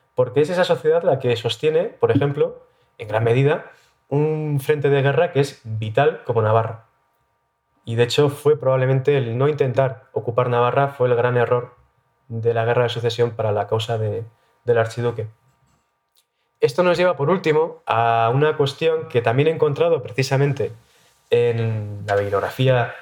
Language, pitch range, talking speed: Spanish, 120-150 Hz, 160 wpm